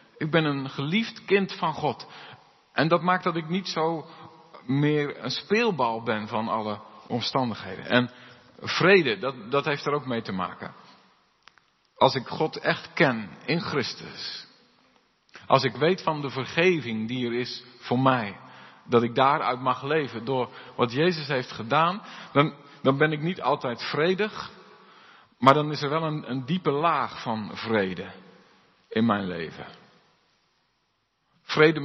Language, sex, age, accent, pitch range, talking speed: Dutch, male, 50-69, Dutch, 135-195 Hz, 155 wpm